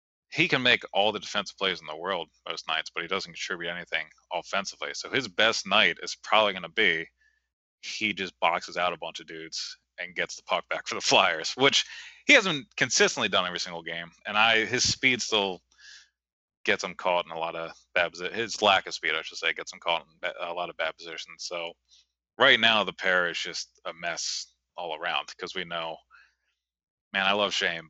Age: 20-39